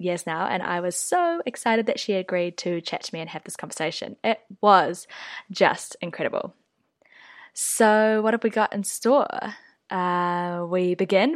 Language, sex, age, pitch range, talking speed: English, female, 10-29, 175-220 Hz, 170 wpm